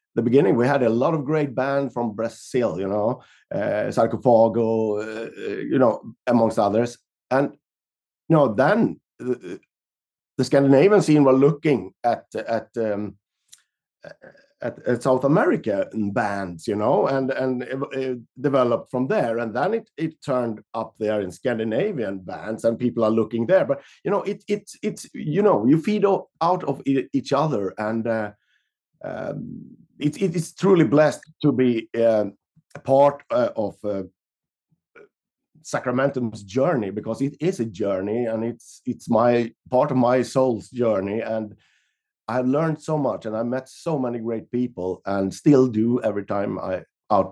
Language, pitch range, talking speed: Spanish, 110-145 Hz, 160 wpm